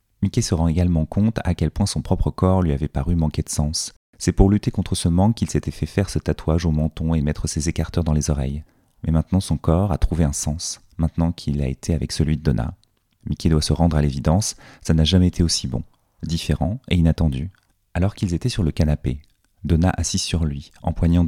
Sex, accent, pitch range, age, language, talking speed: male, French, 80-95 Hz, 30-49, French, 225 wpm